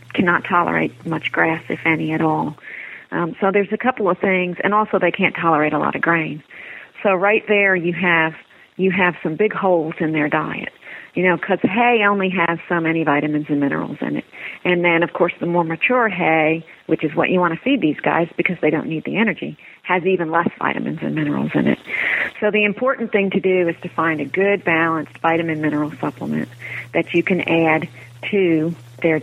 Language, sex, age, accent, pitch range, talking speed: English, female, 40-59, American, 155-185 Hz, 210 wpm